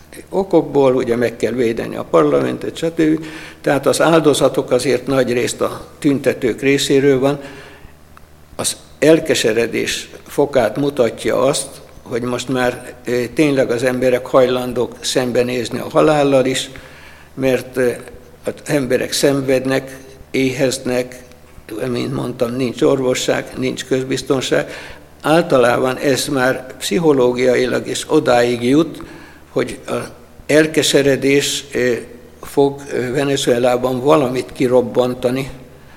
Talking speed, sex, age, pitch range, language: 95 wpm, male, 60-79, 125-135 Hz, Hungarian